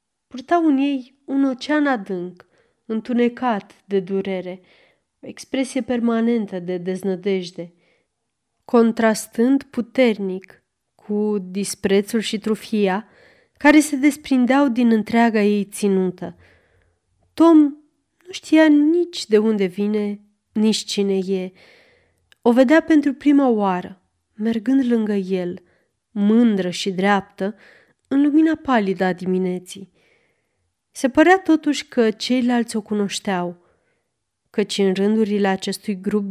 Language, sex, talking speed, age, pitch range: Romanian, female, 105 wpm, 20-39, 195-260 Hz